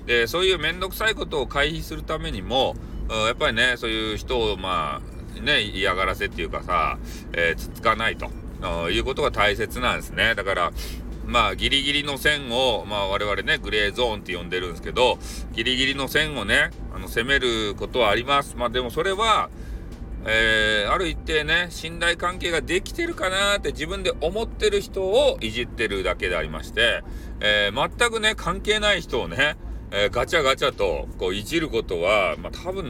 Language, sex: Japanese, male